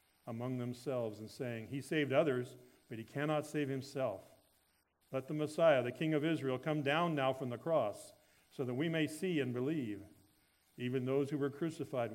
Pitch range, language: 105-145 Hz, English